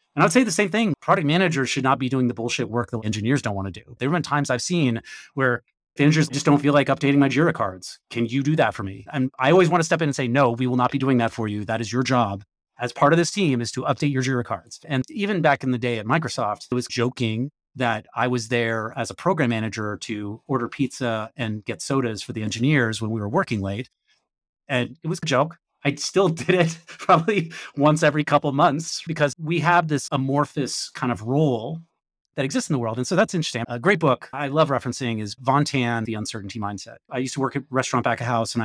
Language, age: English, 30-49